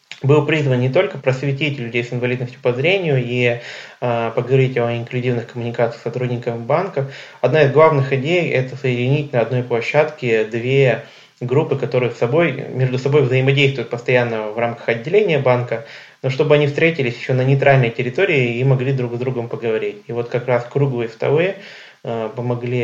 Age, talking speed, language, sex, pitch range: 20-39, 160 wpm, Russian, male, 120-140 Hz